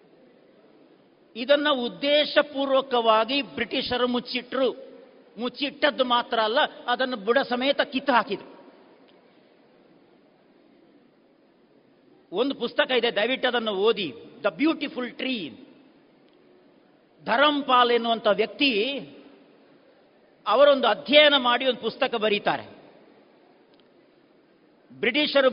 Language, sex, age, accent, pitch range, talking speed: Kannada, male, 50-69, native, 245-285 Hz, 70 wpm